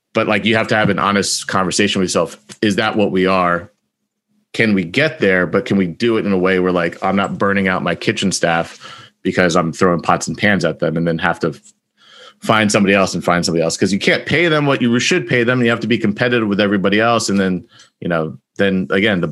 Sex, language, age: male, English, 30-49